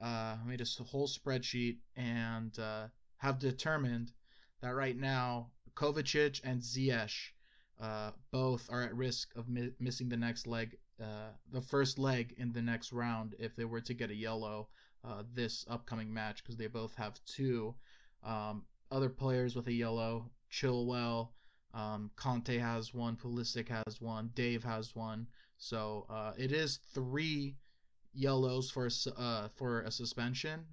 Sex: male